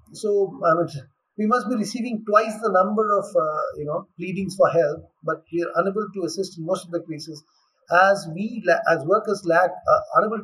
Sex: male